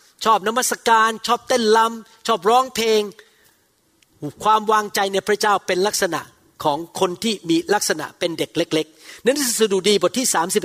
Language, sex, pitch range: Thai, male, 190-255 Hz